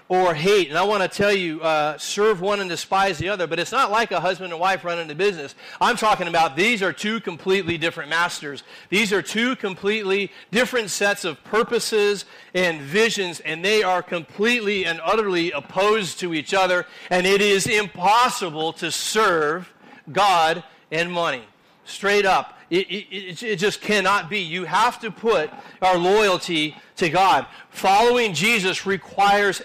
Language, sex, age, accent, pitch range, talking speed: English, male, 40-59, American, 170-210 Hz, 170 wpm